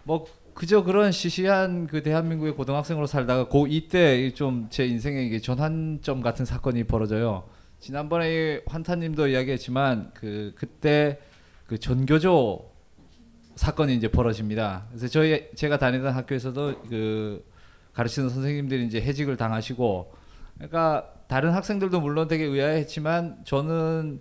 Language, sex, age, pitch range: Korean, male, 20-39, 125-160 Hz